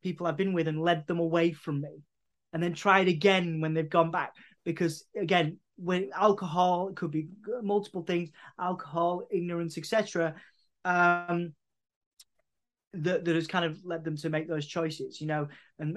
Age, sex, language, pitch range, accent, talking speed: 20-39, male, English, 165-200 Hz, British, 175 wpm